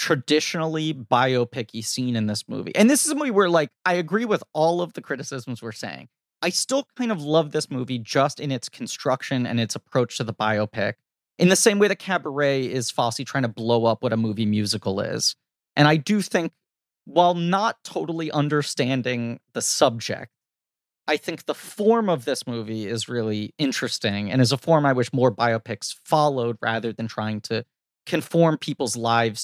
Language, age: English, 30-49